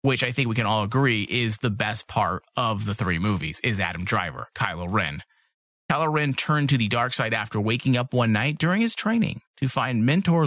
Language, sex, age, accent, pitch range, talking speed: English, male, 30-49, American, 105-135 Hz, 220 wpm